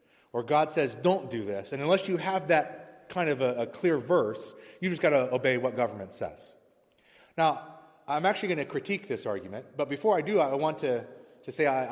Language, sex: English, male